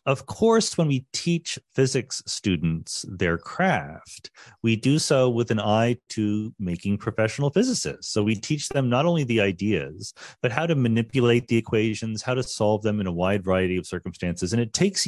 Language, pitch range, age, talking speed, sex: English, 105-145 Hz, 40-59, 185 wpm, male